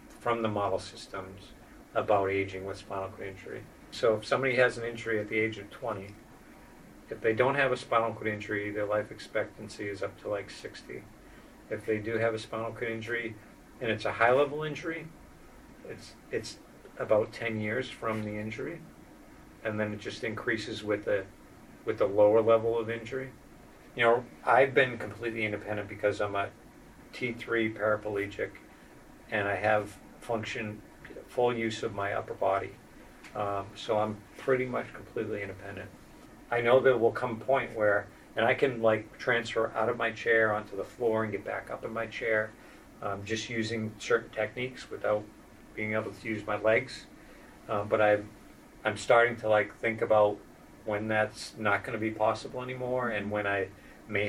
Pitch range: 105-120 Hz